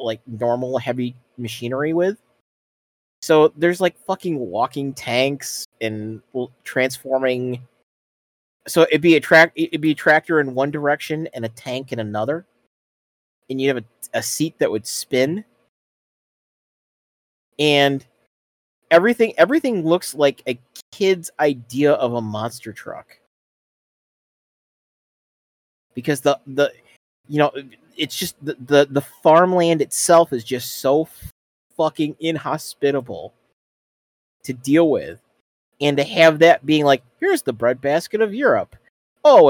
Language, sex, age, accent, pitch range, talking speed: English, male, 30-49, American, 125-170 Hz, 125 wpm